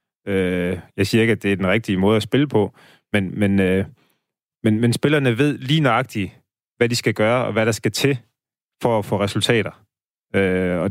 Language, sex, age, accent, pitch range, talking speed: Danish, male, 30-49, native, 100-125 Hz, 180 wpm